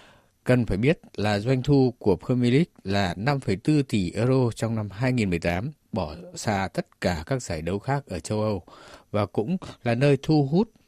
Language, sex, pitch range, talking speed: Vietnamese, male, 105-140 Hz, 180 wpm